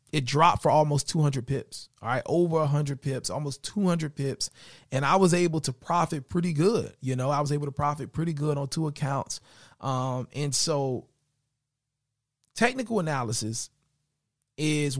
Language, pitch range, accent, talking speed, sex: English, 135-165 Hz, American, 160 wpm, male